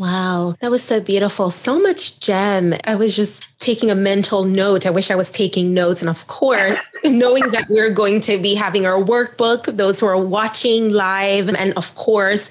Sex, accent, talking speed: female, American, 195 wpm